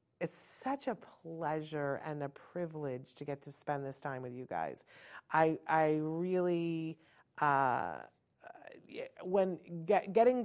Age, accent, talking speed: 40-59, American, 130 wpm